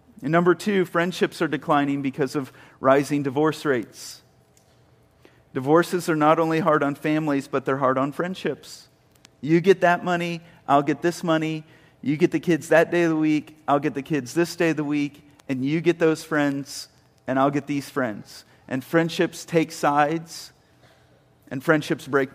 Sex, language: male, English